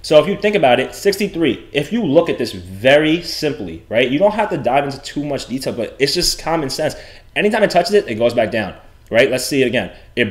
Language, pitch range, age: English, 115-155 Hz, 20-39